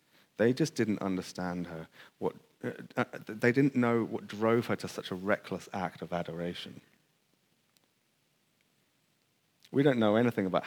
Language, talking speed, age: English, 140 wpm, 30-49